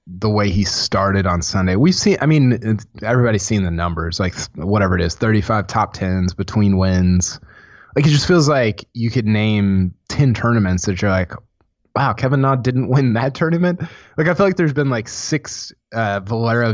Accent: American